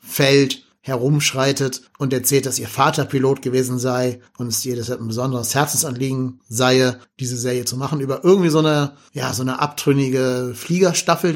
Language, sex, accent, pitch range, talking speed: German, male, German, 125-145 Hz, 165 wpm